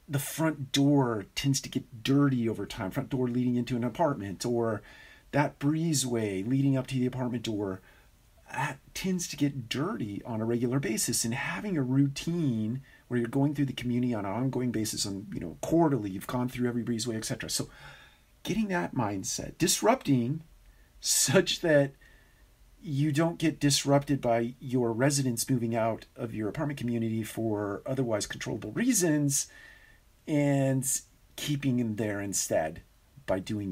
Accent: American